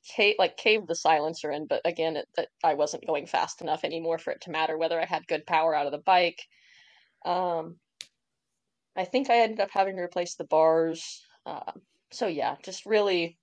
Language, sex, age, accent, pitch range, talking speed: English, female, 20-39, American, 160-215 Hz, 205 wpm